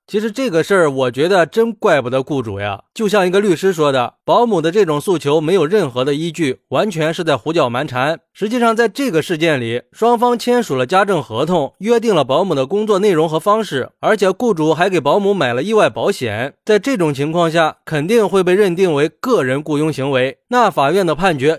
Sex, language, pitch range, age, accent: male, Chinese, 140-200 Hz, 20-39, native